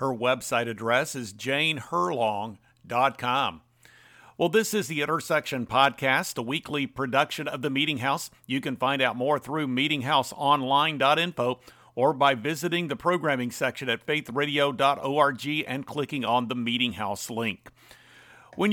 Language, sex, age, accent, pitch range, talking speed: English, male, 50-69, American, 130-165 Hz, 130 wpm